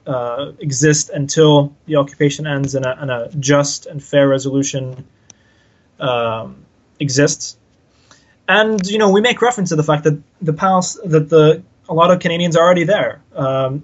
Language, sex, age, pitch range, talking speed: English, male, 20-39, 125-150 Hz, 165 wpm